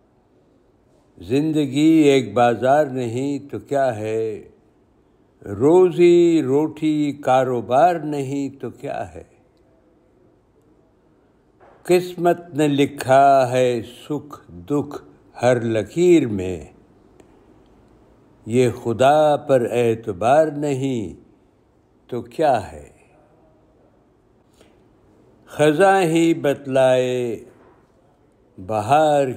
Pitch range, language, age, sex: 115-145 Hz, Urdu, 60-79, male